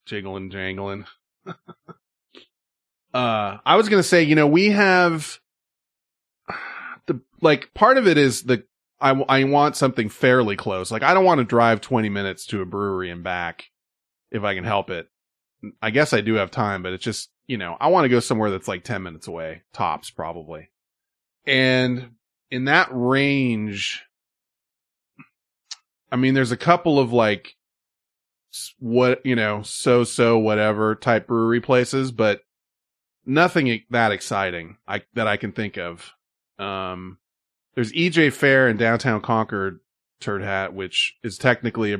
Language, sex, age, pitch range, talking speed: English, male, 30-49, 100-130 Hz, 155 wpm